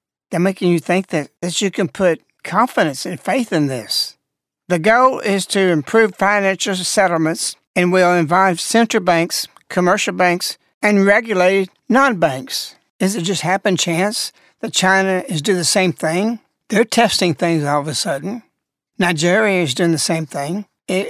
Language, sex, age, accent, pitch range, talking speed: English, male, 60-79, American, 165-200 Hz, 160 wpm